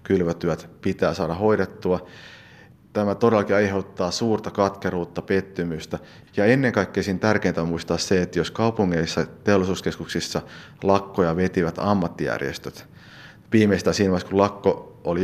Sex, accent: male, native